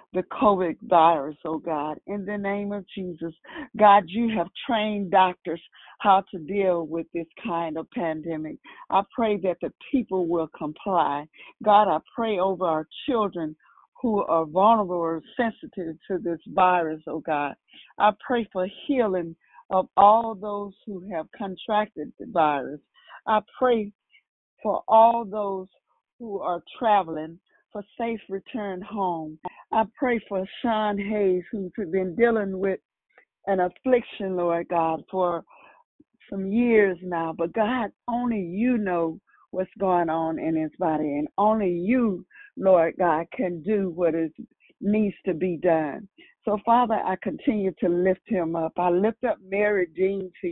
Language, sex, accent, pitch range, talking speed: English, female, American, 170-215 Hz, 150 wpm